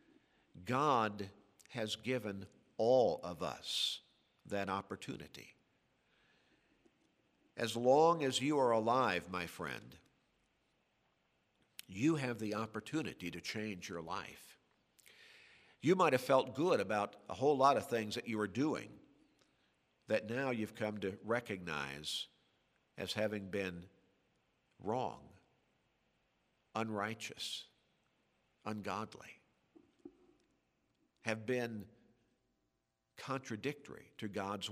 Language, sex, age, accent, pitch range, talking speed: English, male, 50-69, American, 100-130 Hz, 95 wpm